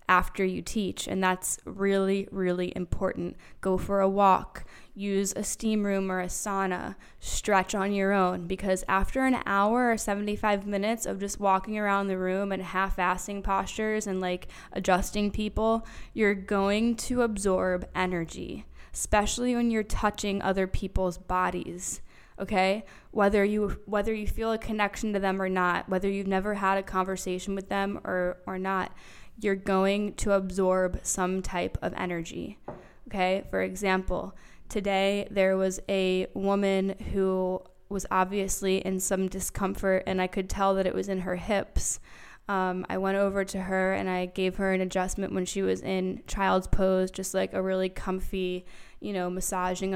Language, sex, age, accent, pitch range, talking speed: English, female, 10-29, American, 185-200 Hz, 165 wpm